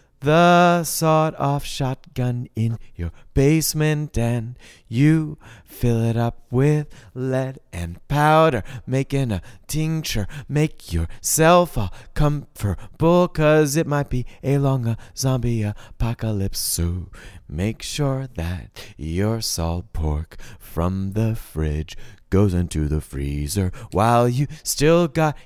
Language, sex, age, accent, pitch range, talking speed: English, male, 30-49, American, 95-135 Hz, 115 wpm